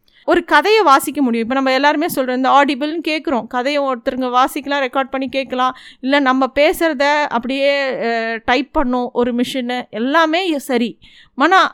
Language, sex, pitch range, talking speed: Tamil, female, 250-315 Hz, 145 wpm